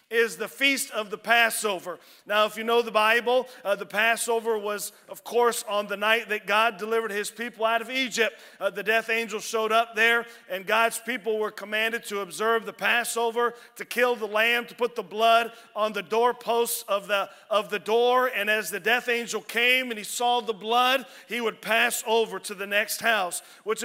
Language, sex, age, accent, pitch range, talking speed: English, male, 40-59, American, 220-250 Hz, 205 wpm